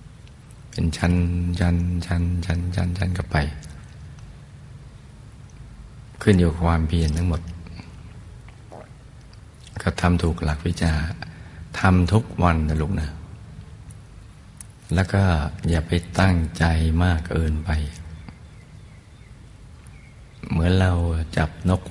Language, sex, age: Thai, male, 60-79